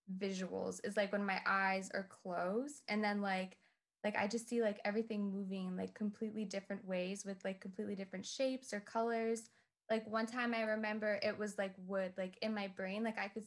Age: 20-39